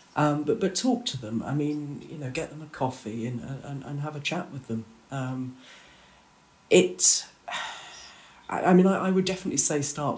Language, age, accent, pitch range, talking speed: English, 40-59, British, 130-150 Hz, 195 wpm